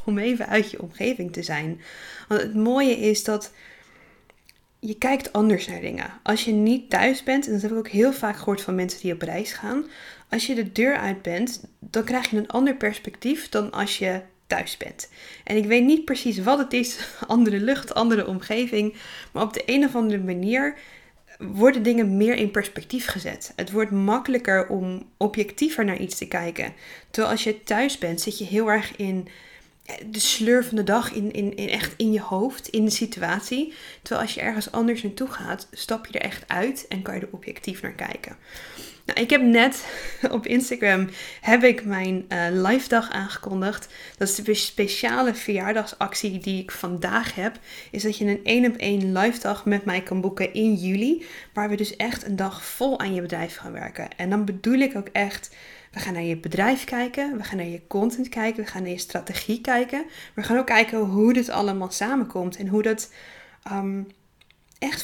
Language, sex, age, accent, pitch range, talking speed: Dutch, female, 10-29, Dutch, 195-240 Hz, 200 wpm